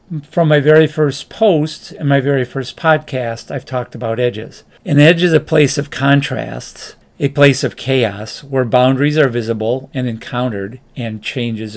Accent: American